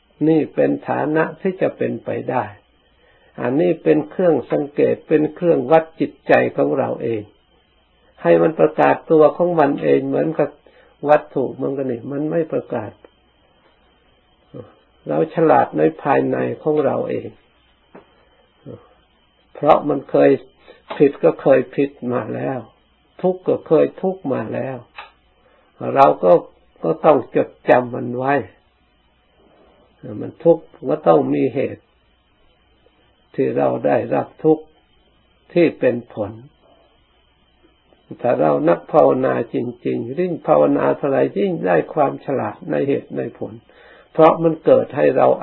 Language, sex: Thai, male